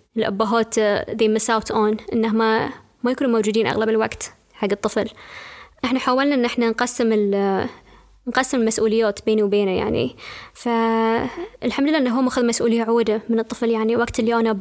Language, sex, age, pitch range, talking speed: Arabic, female, 20-39, 215-240 Hz, 150 wpm